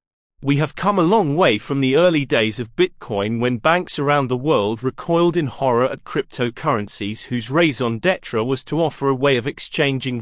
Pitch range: 120-160 Hz